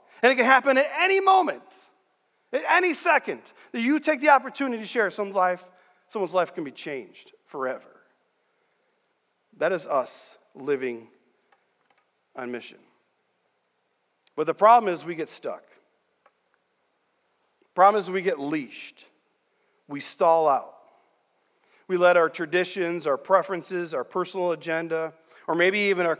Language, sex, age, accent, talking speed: English, male, 40-59, American, 135 wpm